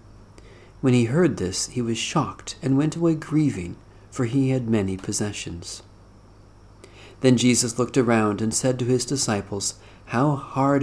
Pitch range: 100-130 Hz